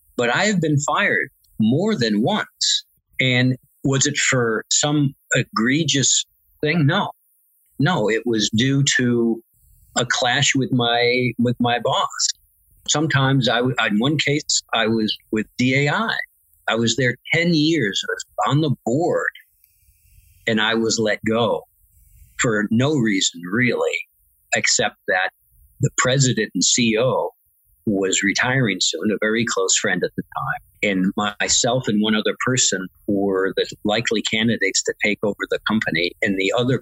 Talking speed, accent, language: 145 wpm, American, English